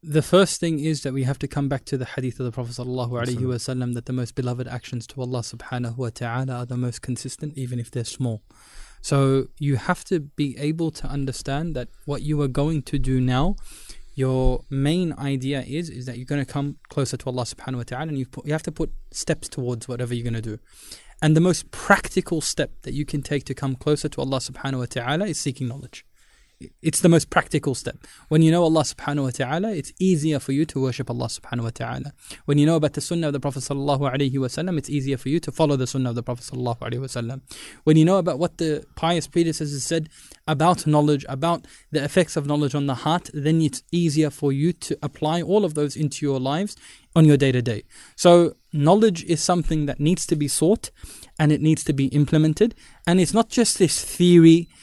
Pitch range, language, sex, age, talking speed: 130-160 Hz, English, male, 20-39, 220 wpm